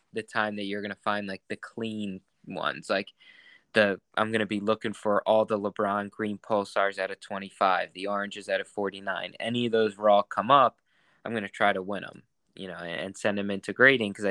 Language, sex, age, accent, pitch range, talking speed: English, male, 20-39, American, 100-115 Hz, 220 wpm